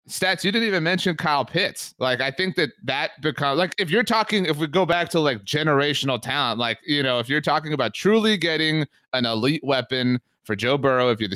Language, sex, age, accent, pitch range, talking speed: English, male, 30-49, American, 110-150 Hz, 220 wpm